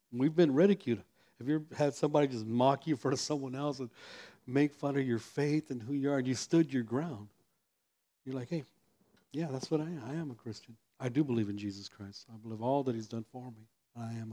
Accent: American